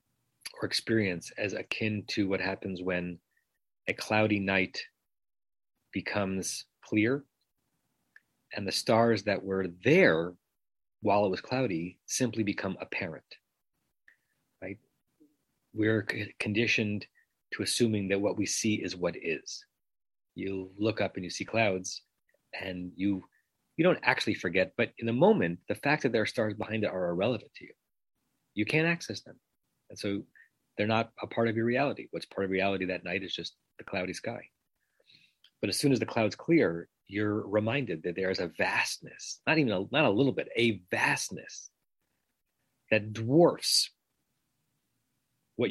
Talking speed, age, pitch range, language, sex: 155 wpm, 30-49, 95-110 Hz, English, male